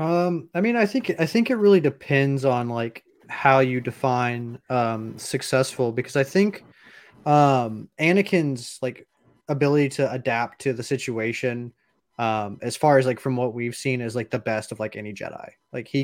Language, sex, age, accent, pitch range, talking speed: English, male, 20-39, American, 120-140 Hz, 180 wpm